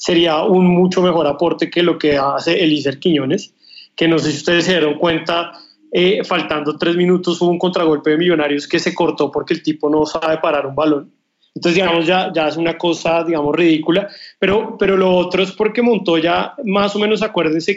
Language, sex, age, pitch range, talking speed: Spanish, male, 30-49, 155-185 Hz, 200 wpm